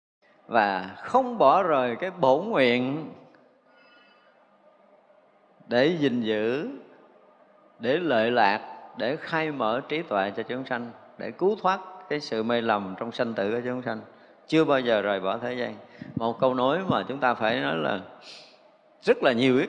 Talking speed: 165 wpm